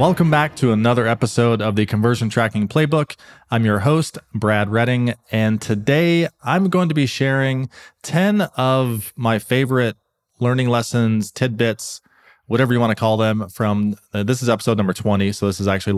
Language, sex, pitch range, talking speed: English, male, 100-120 Hz, 175 wpm